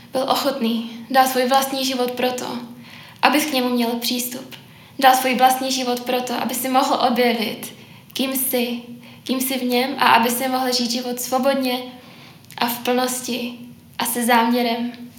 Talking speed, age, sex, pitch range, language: 160 wpm, 10-29, female, 240-265 Hz, Czech